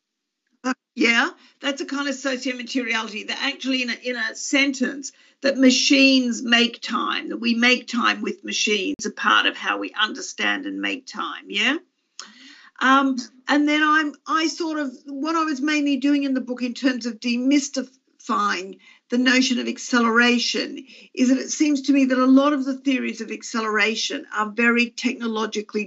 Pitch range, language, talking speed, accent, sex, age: 230-275 Hz, Portuguese, 170 wpm, Australian, female, 50-69